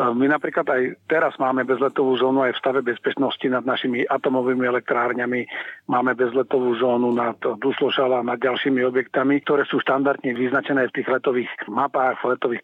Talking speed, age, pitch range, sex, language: 160 wpm, 40-59, 125-135 Hz, male, Slovak